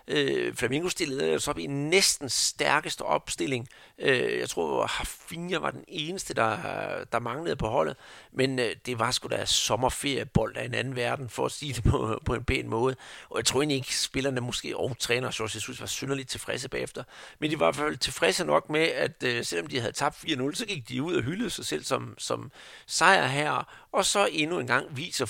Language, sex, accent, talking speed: Danish, male, native, 210 wpm